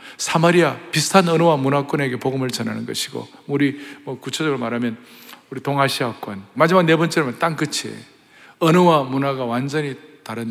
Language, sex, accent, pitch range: Korean, male, native, 150-245 Hz